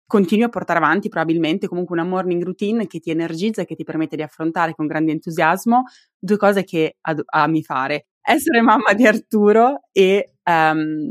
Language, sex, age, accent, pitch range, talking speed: Italian, female, 20-39, native, 155-195 Hz, 175 wpm